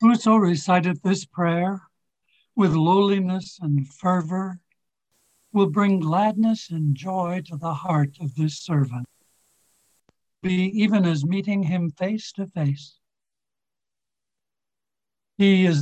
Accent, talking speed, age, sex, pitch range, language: American, 110 wpm, 60-79, male, 160-200 Hz, English